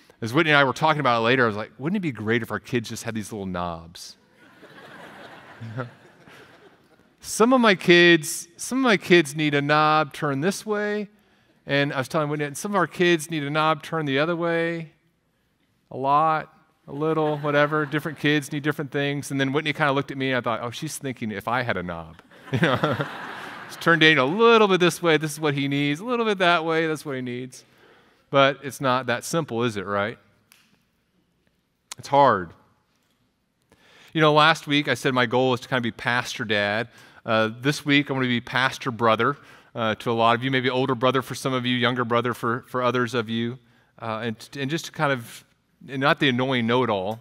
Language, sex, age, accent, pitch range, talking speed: English, male, 40-59, American, 115-155 Hz, 215 wpm